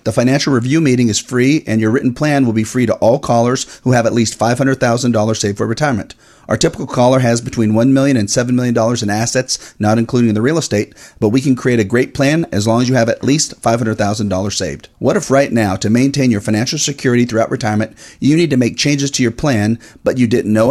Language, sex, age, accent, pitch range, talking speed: English, male, 40-59, American, 110-135 Hz, 230 wpm